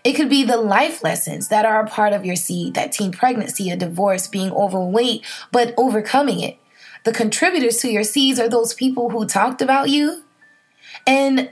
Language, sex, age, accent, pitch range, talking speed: English, female, 20-39, American, 195-260 Hz, 190 wpm